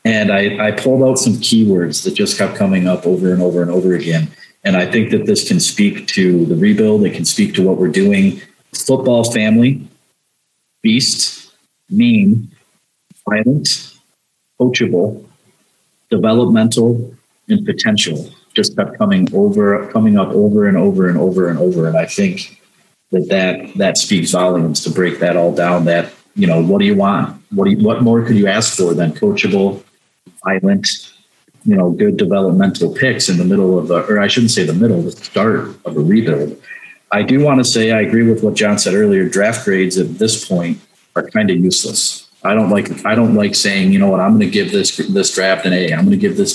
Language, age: English, 40-59